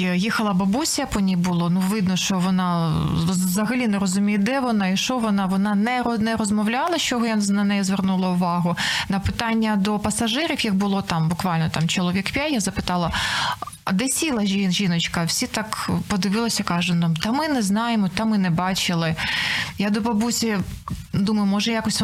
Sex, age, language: female, 20-39, Ukrainian